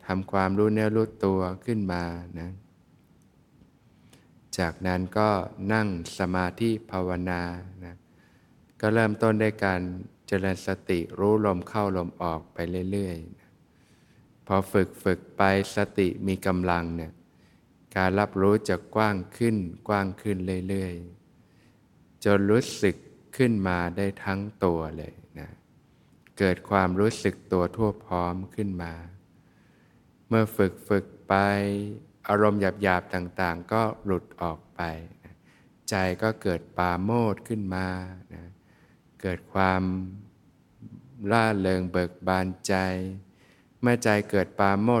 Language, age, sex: Thai, 20-39, male